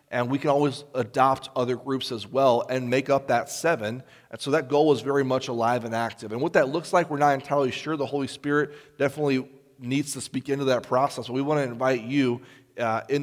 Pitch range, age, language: 120-145 Hz, 30-49, English